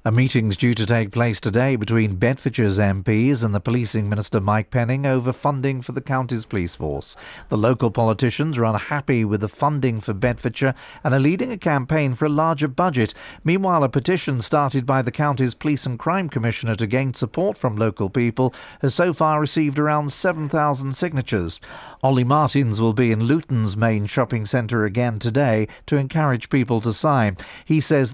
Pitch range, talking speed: 115-145 Hz, 180 wpm